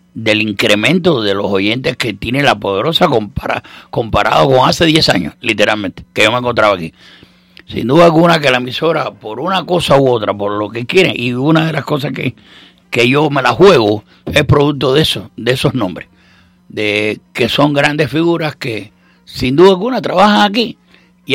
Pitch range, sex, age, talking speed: 135-190 Hz, male, 60-79, 185 wpm